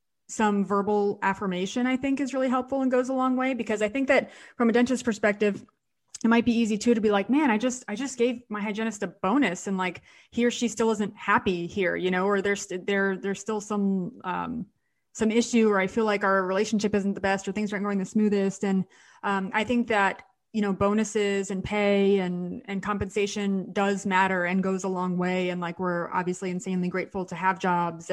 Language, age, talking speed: English, 30-49, 220 wpm